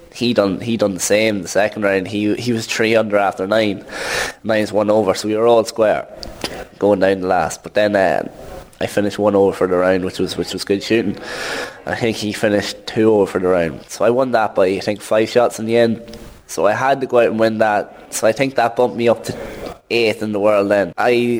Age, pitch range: 20-39, 105-115 Hz